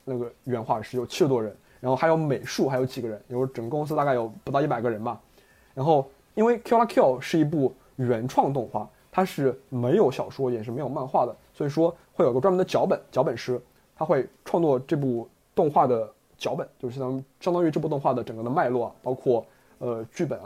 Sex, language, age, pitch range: male, Chinese, 20-39, 125-160 Hz